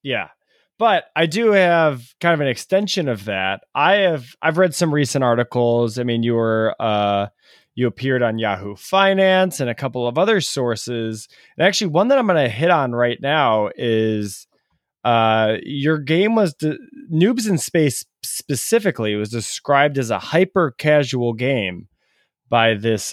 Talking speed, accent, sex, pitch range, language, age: 170 wpm, American, male, 110-150 Hz, English, 20-39